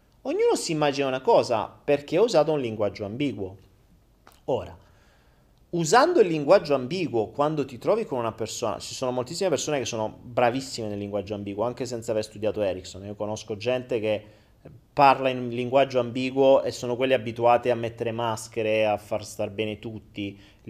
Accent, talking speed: native, 170 wpm